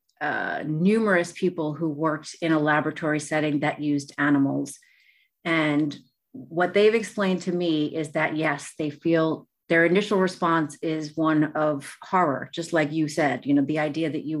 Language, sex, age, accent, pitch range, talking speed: English, female, 30-49, American, 155-195 Hz, 165 wpm